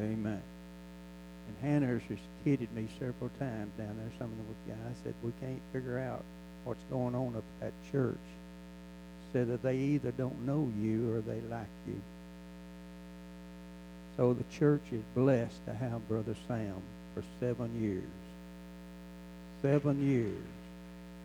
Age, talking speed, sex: 60-79, 145 wpm, male